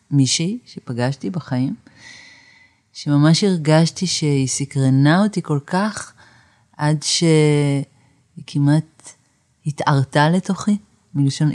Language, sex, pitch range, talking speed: Hebrew, female, 135-165 Hz, 85 wpm